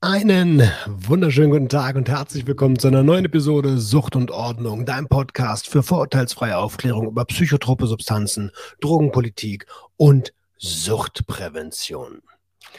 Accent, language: German, German